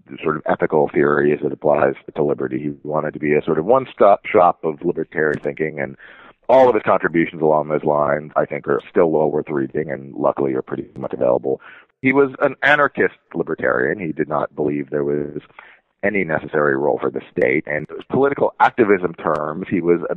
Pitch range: 75-100 Hz